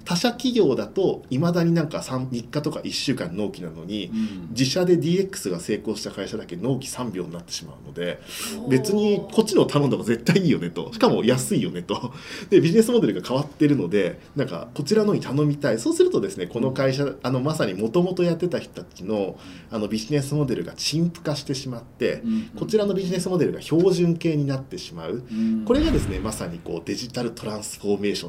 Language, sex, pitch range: Japanese, male, 120-185 Hz